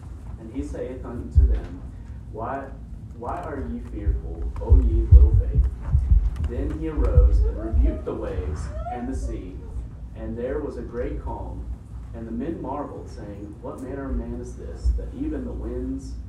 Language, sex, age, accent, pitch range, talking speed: English, male, 30-49, American, 80-115 Hz, 165 wpm